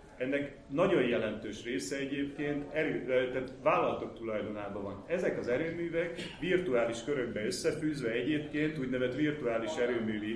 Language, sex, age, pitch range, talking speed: Hungarian, male, 30-49, 115-145 Hz, 115 wpm